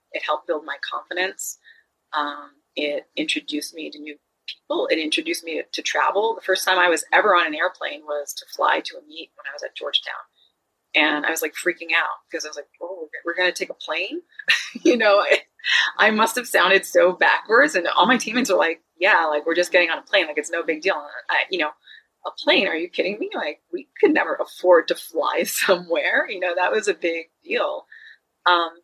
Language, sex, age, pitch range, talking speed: English, female, 30-49, 155-255 Hz, 225 wpm